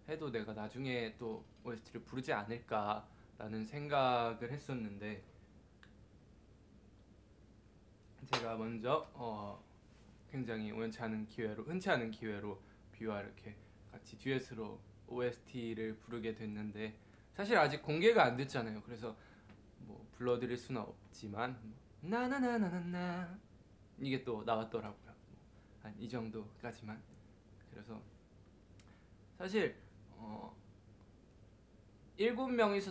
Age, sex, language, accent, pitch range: 20-39, male, Korean, native, 105-120 Hz